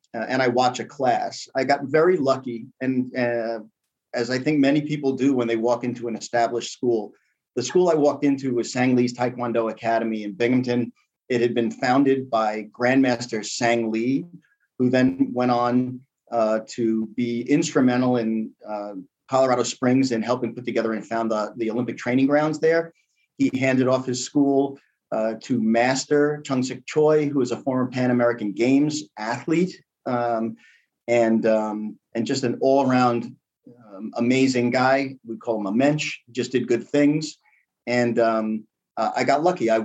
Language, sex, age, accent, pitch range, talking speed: English, male, 40-59, American, 120-140 Hz, 170 wpm